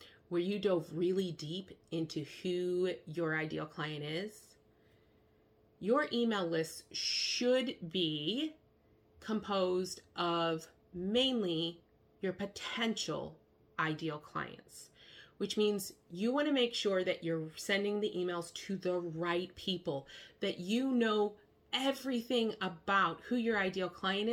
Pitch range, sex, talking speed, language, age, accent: 175-225 Hz, female, 120 wpm, English, 30-49, American